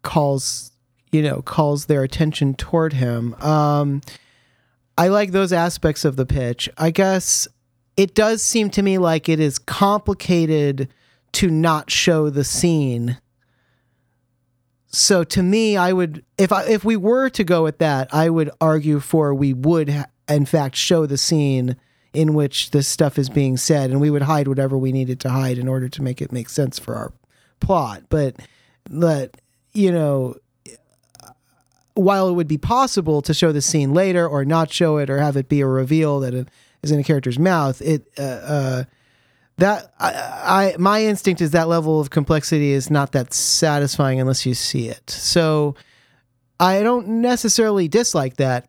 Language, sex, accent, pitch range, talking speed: English, male, American, 130-165 Hz, 175 wpm